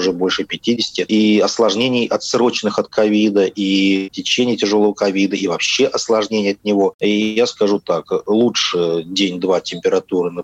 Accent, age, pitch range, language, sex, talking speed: native, 30-49, 95-120 Hz, Russian, male, 145 wpm